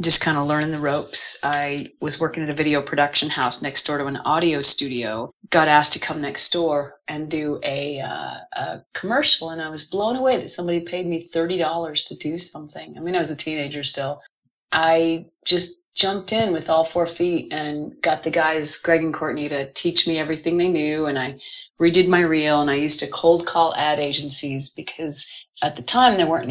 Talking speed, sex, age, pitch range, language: 210 wpm, female, 30-49, 145-170 Hz, English